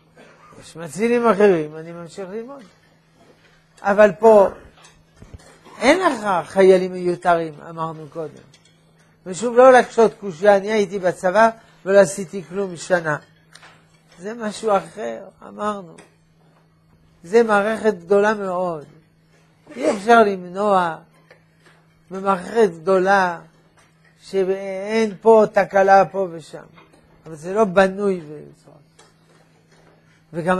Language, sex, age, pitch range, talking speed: Hebrew, male, 60-79, 165-210 Hz, 95 wpm